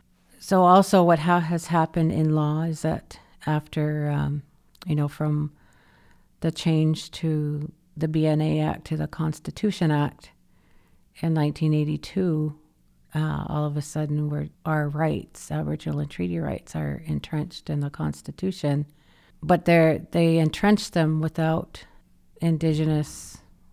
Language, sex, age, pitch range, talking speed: English, female, 50-69, 150-165 Hz, 130 wpm